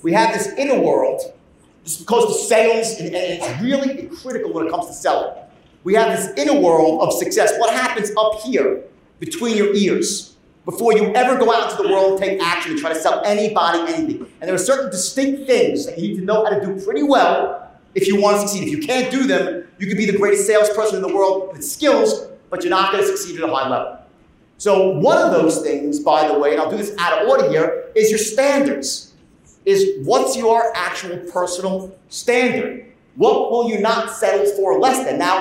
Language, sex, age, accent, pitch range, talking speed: English, male, 40-59, American, 200-280 Hz, 220 wpm